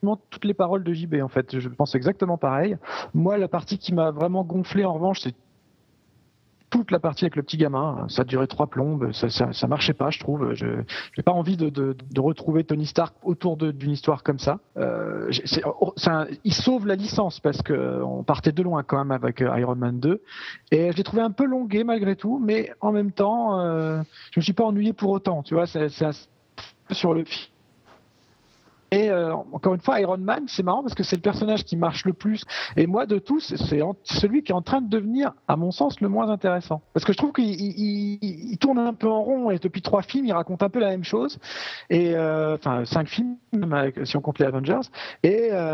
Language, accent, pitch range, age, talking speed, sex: French, French, 150-210 Hz, 40-59, 230 wpm, male